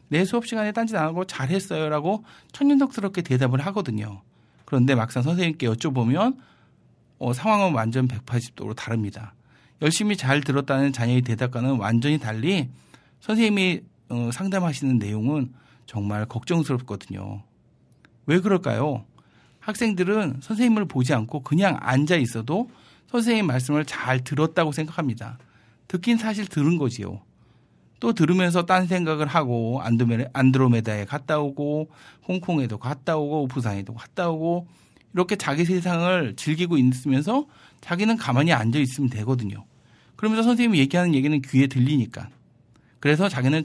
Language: Korean